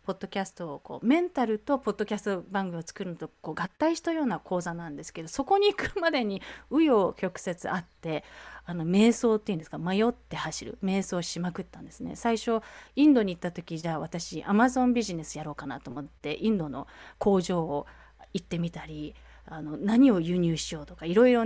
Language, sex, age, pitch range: Japanese, female, 30-49, 170-255 Hz